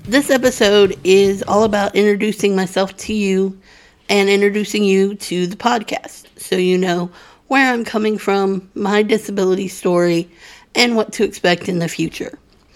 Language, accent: English, American